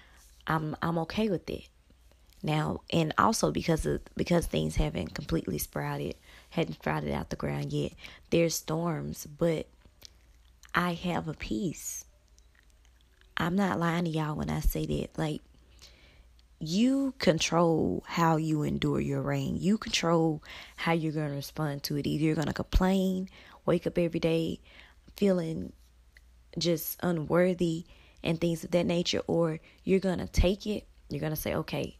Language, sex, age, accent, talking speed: English, female, 20-39, American, 155 wpm